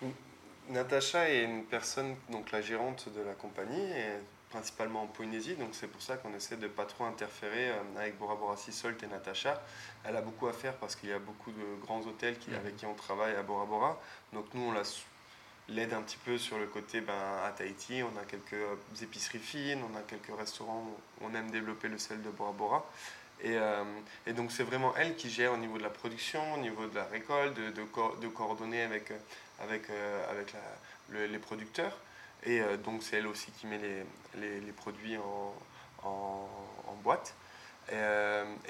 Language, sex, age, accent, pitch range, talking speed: French, male, 20-39, French, 105-115 Hz, 205 wpm